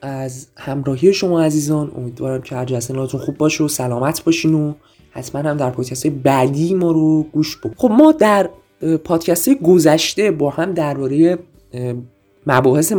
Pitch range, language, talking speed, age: 145-195 Hz, Persian, 145 wpm, 20-39